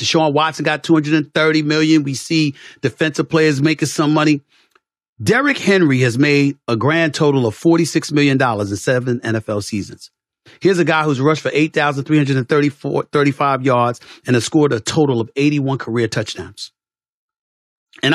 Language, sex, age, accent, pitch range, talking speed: English, male, 40-59, American, 120-160 Hz, 145 wpm